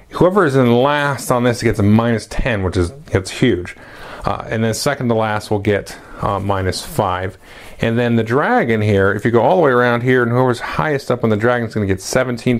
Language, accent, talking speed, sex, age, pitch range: English, American, 240 wpm, male, 30-49, 100-125 Hz